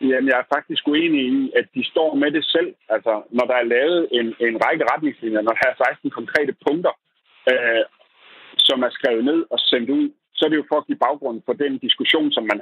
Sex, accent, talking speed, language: male, native, 215 wpm, Danish